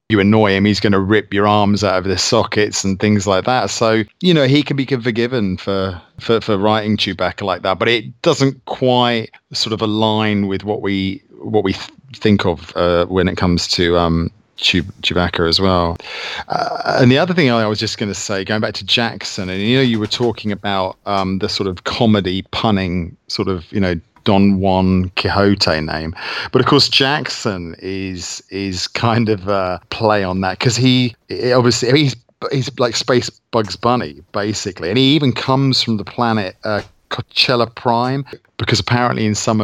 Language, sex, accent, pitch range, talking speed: English, male, British, 95-115 Hz, 190 wpm